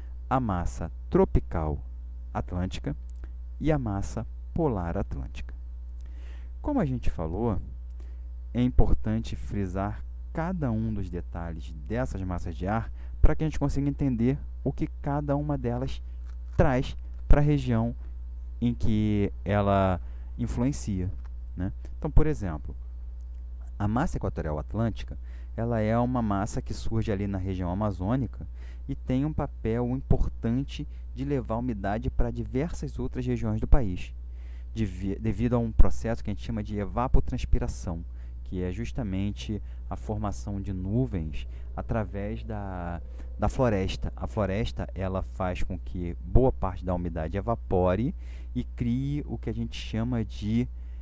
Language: Portuguese